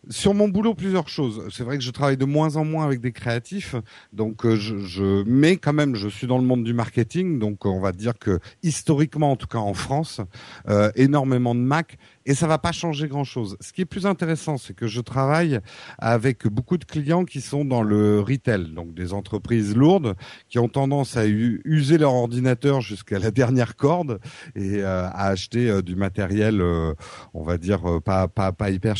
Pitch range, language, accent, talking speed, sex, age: 105-150 Hz, French, French, 210 wpm, male, 50-69